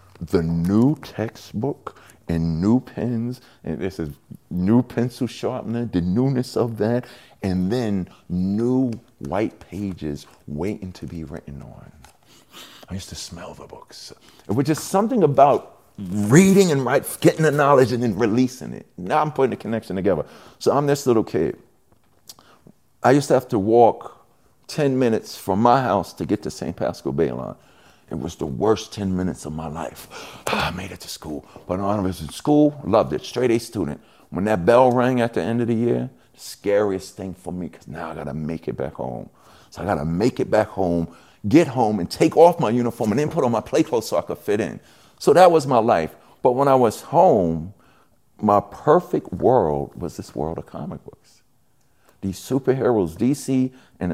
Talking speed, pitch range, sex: 190 wpm, 90-130 Hz, male